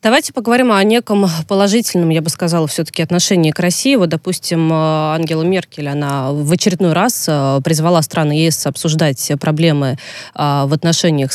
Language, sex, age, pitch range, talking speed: Russian, female, 20-39, 150-180 Hz, 145 wpm